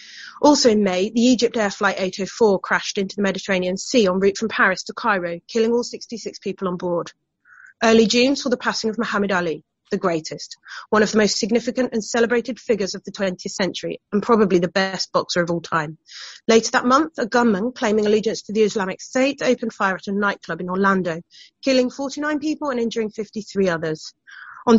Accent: British